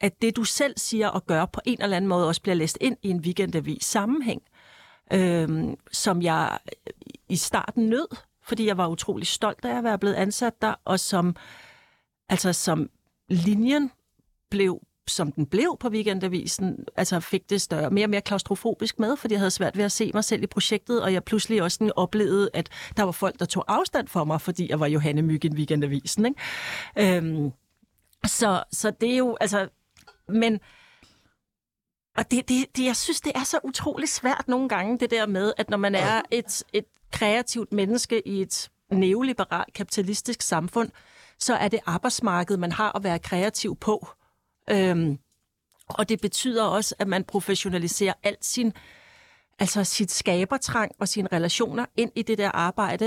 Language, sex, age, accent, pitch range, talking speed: Danish, female, 60-79, native, 185-230 Hz, 180 wpm